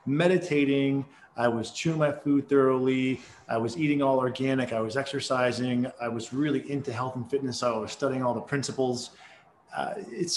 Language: English